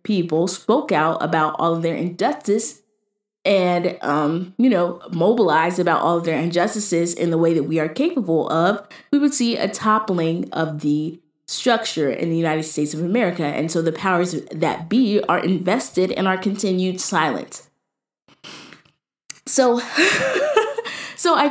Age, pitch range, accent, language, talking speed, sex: 20-39, 165-210 Hz, American, English, 155 wpm, female